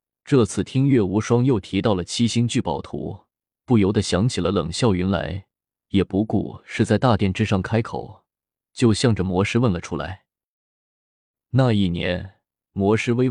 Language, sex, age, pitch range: Chinese, male, 20-39, 95-120 Hz